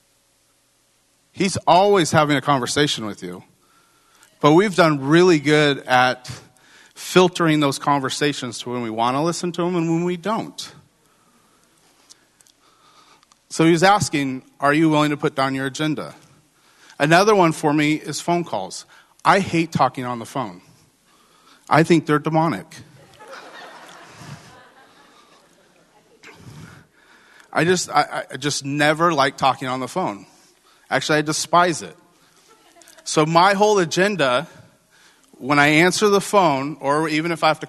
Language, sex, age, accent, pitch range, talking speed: English, male, 40-59, American, 140-175 Hz, 135 wpm